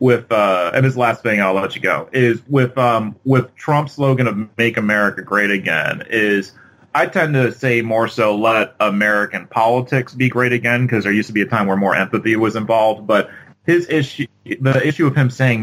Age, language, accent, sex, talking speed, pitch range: 30-49, English, American, male, 205 wpm, 120-155 Hz